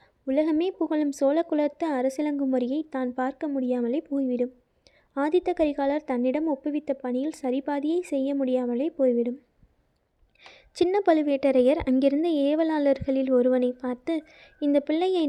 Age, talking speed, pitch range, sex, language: 20-39, 100 wpm, 255-300 Hz, female, Tamil